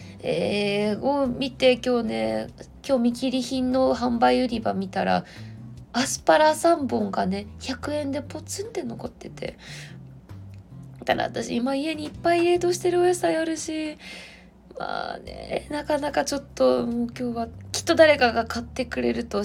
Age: 20-39